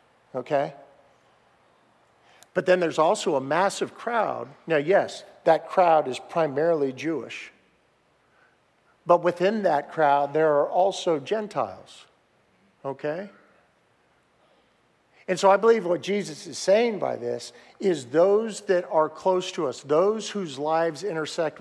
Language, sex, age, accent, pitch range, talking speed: English, male, 50-69, American, 155-190 Hz, 125 wpm